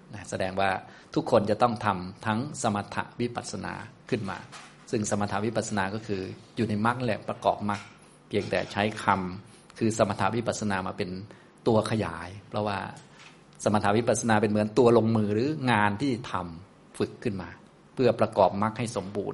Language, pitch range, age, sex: Thai, 100-115 Hz, 20-39, male